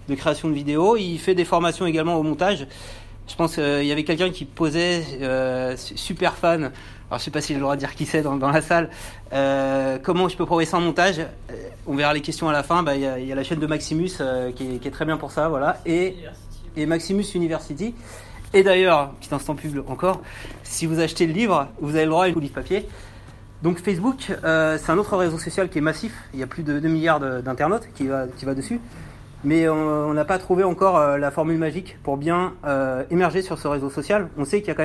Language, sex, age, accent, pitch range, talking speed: French, male, 30-49, French, 140-175 Hz, 250 wpm